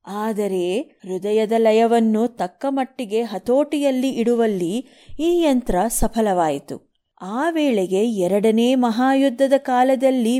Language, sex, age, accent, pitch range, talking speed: Kannada, female, 30-49, native, 210-270 Hz, 85 wpm